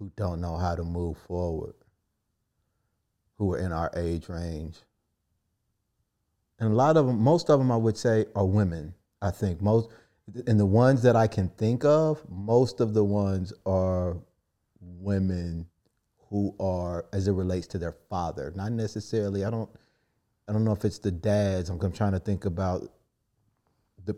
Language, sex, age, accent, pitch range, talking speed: English, male, 30-49, American, 95-110 Hz, 170 wpm